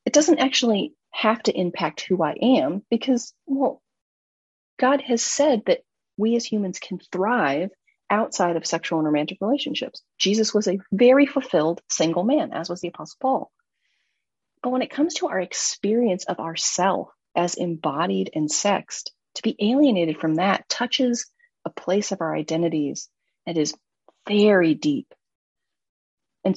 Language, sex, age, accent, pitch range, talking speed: English, female, 40-59, American, 165-255 Hz, 150 wpm